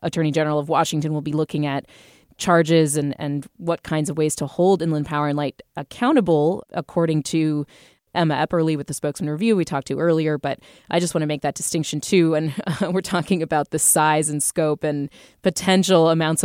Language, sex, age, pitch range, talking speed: English, female, 20-39, 150-180 Hz, 200 wpm